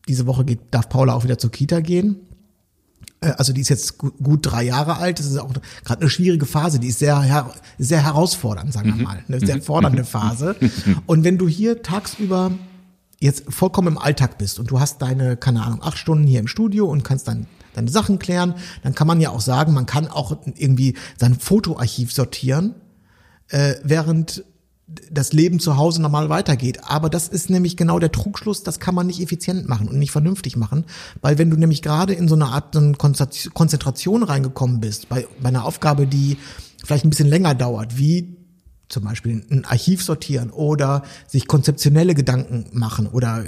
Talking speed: 190 wpm